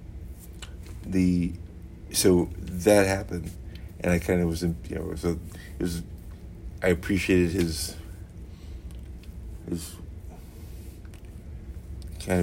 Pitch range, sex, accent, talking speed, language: 85-90 Hz, male, American, 90 wpm, English